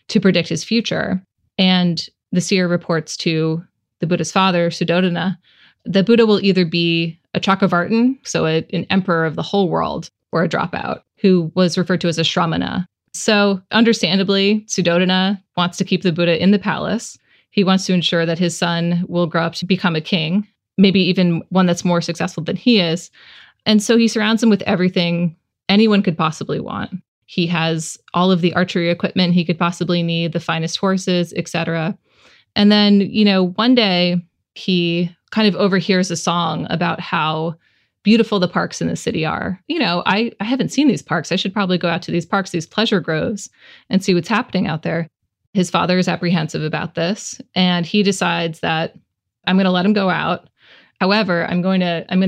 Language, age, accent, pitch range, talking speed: English, 20-39, American, 170-200 Hz, 185 wpm